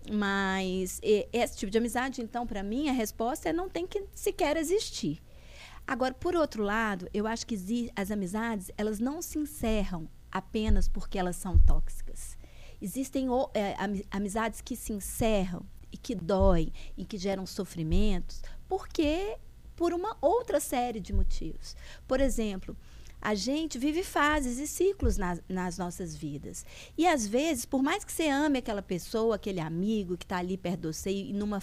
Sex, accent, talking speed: female, Brazilian, 160 wpm